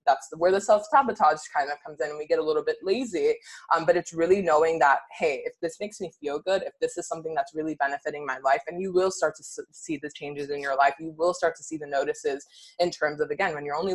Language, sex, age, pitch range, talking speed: English, female, 20-39, 150-195 Hz, 270 wpm